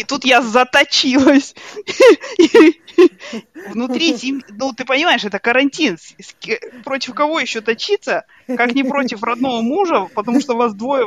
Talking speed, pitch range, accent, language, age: 125 wpm, 210-295 Hz, native, Russian, 20-39